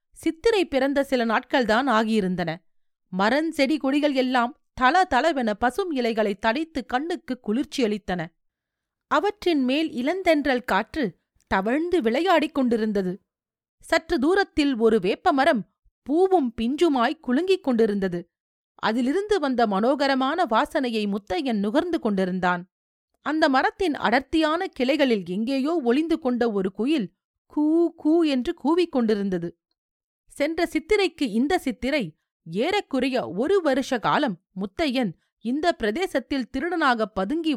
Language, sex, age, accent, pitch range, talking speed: Tamil, female, 30-49, native, 215-310 Hz, 95 wpm